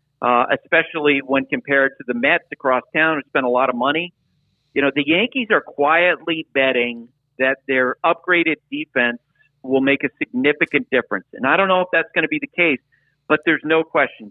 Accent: American